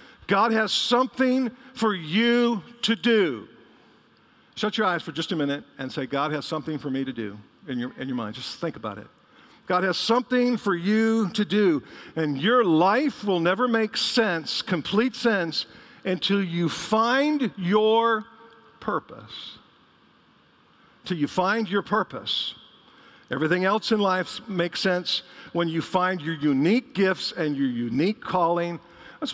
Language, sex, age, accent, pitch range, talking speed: English, male, 50-69, American, 185-245 Hz, 150 wpm